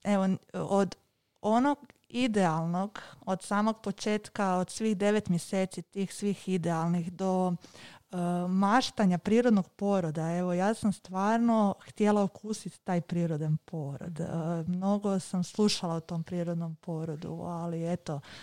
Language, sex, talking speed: Croatian, female, 125 wpm